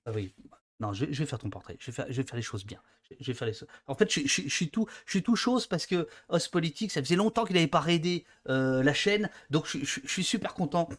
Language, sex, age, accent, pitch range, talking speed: French, male, 30-49, French, 130-170 Hz, 290 wpm